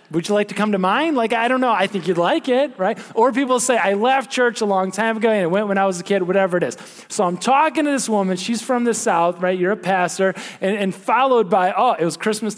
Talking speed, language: 285 wpm, English